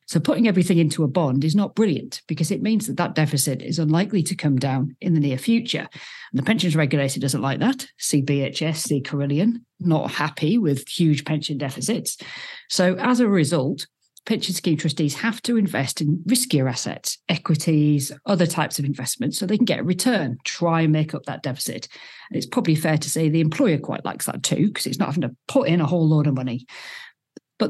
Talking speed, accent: 210 wpm, British